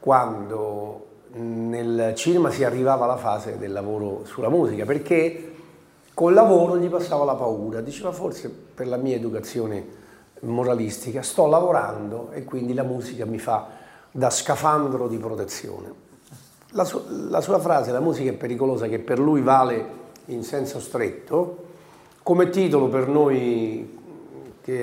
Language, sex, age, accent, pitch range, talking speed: Italian, male, 40-59, native, 115-155 Hz, 140 wpm